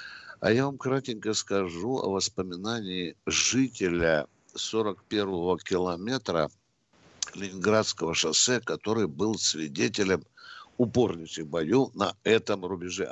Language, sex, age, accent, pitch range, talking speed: Russian, male, 60-79, native, 95-135 Hz, 90 wpm